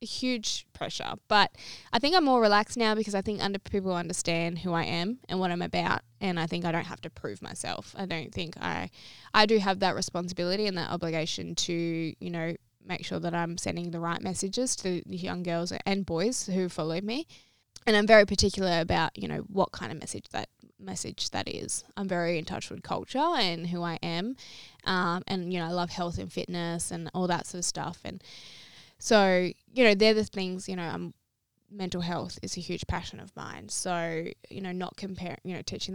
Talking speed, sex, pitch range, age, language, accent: 215 wpm, female, 170-195 Hz, 10-29, English, Australian